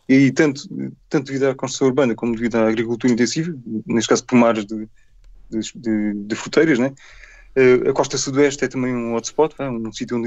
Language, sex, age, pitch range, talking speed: Portuguese, male, 20-39, 120-150 Hz, 180 wpm